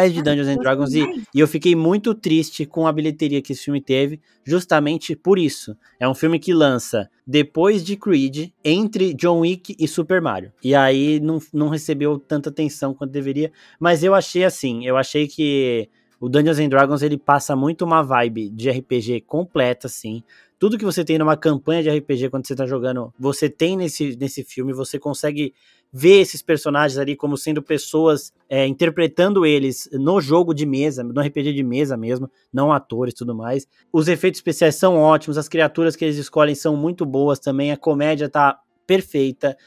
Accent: Brazilian